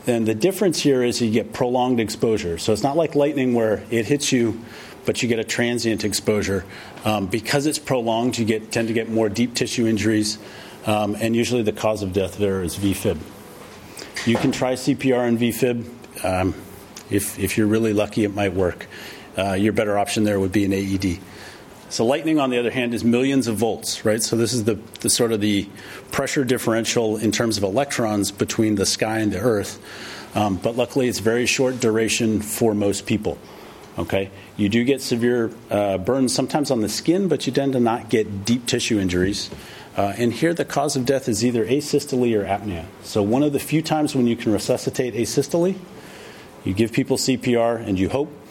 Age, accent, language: 40-59, American, English